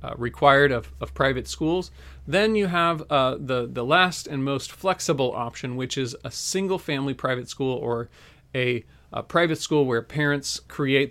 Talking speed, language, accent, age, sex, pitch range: 175 wpm, English, American, 40-59, male, 120-145 Hz